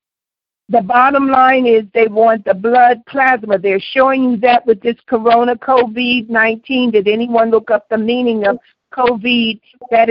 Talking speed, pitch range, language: 160 wpm, 225-265 Hz, English